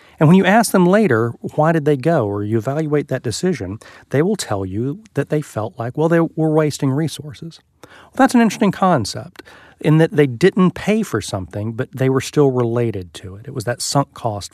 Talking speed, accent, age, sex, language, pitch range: 210 wpm, American, 40-59, male, English, 105-155 Hz